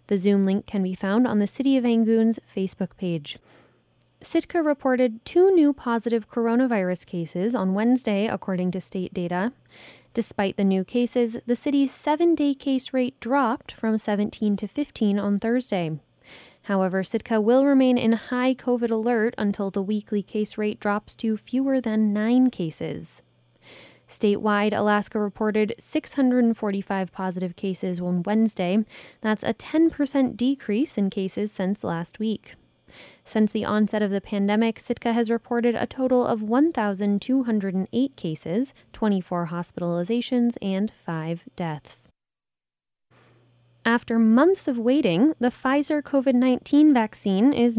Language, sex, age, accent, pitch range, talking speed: English, female, 10-29, American, 195-245 Hz, 135 wpm